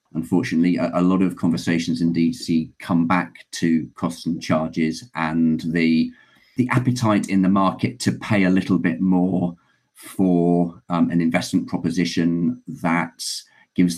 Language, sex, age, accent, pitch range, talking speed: English, male, 40-59, British, 85-95 Hz, 140 wpm